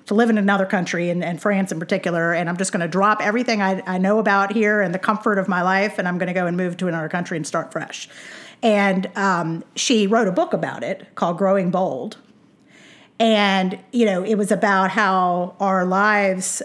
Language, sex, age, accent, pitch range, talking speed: English, female, 40-59, American, 175-210 Hz, 220 wpm